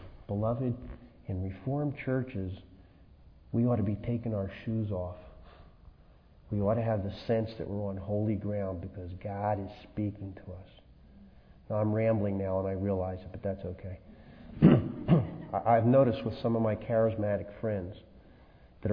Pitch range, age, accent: 95-110 Hz, 40-59, American